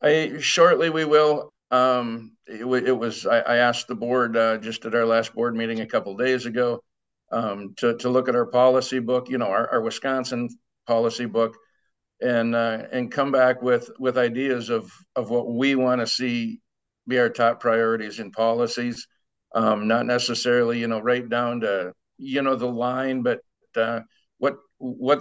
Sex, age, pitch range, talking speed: male, 50-69, 115-130 Hz, 180 wpm